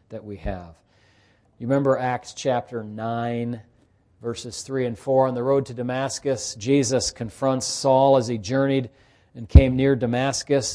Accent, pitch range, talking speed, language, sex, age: American, 110-145 Hz, 150 wpm, English, male, 40-59